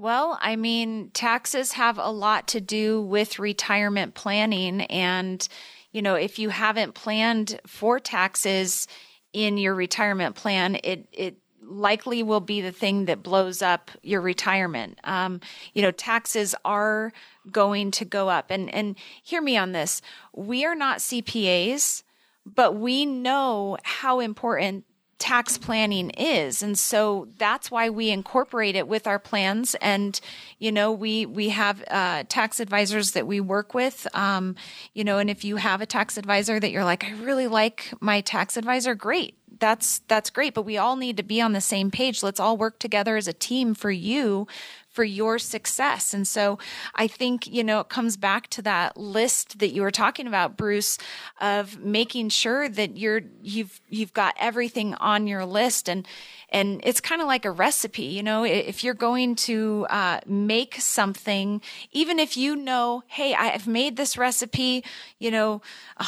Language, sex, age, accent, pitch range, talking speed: English, female, 30-49, American, 200-235 Hz, 175 wpm